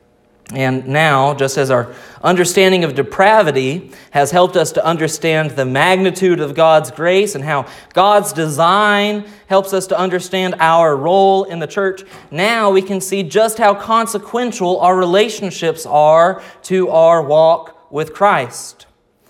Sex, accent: male, American